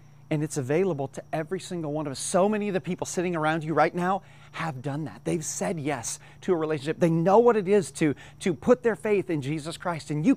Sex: male